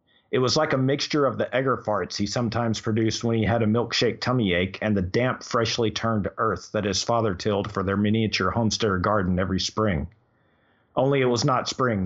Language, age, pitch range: English, 40-59, 100-125 Hz